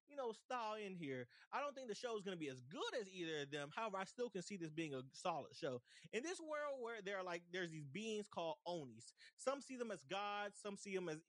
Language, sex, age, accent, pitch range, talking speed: English, male, 20-39, American, 165-215 Hz, 270 wpm